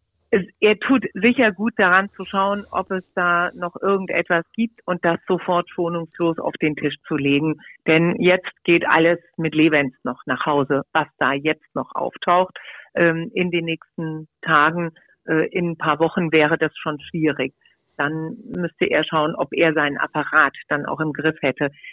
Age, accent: 50-69, German